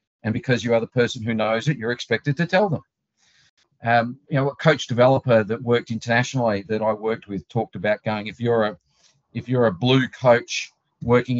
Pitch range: 115-135 Hz